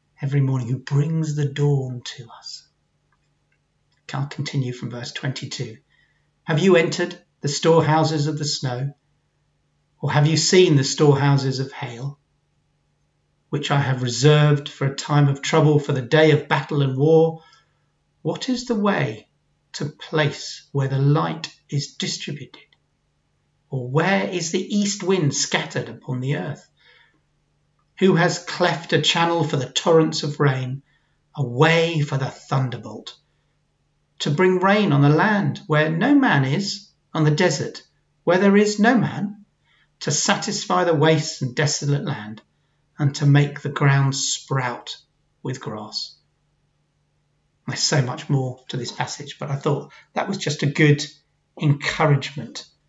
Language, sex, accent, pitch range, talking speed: English, male, British, 140-165 Hz, 150 wpm